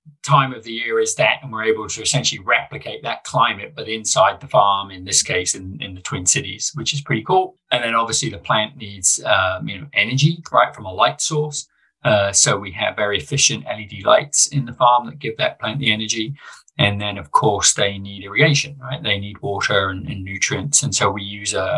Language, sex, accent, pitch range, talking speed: English, male, British, 100-140 Hz, 225 wpm